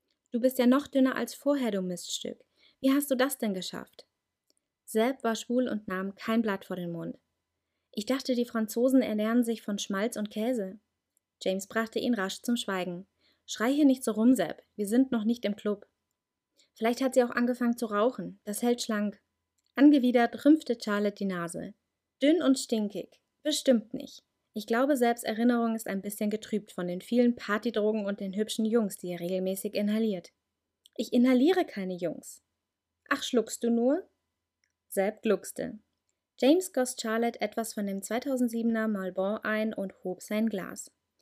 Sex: female